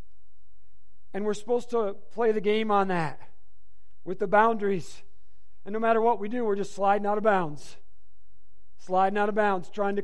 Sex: male